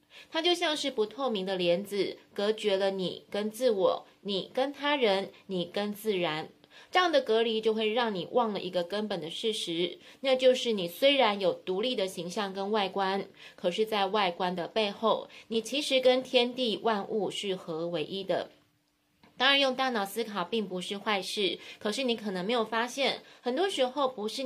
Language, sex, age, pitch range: Chinese, female, 20-39, 190-245 Hz